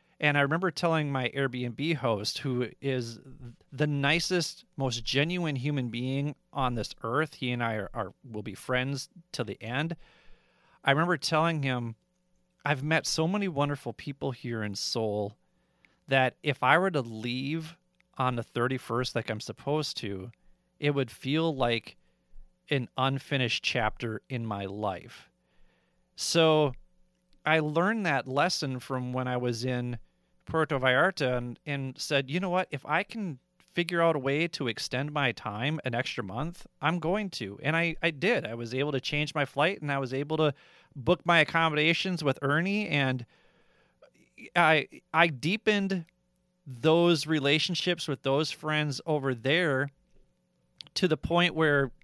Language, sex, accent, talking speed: English, male, American, 155 wpm